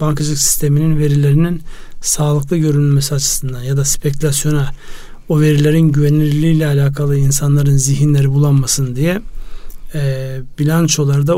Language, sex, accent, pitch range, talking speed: Turkish, male, native, 140-155 Hz, 100 wpm